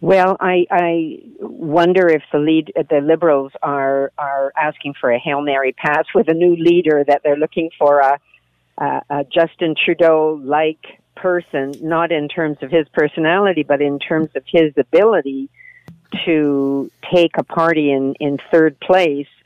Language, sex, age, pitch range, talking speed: English, female, 50-69, 140-165 Hz, 160 wpm